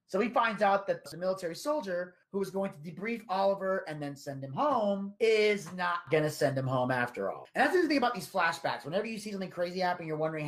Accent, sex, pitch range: American, male, 130-180 Hz